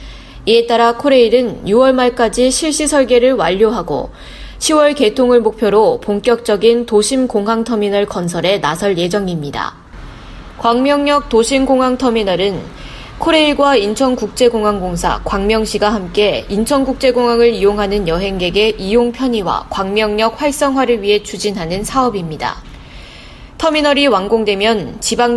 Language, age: Korean, 20-39